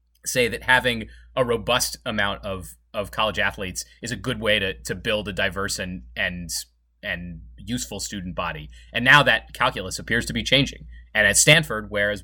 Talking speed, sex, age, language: 185 wpm, male, 30-49, English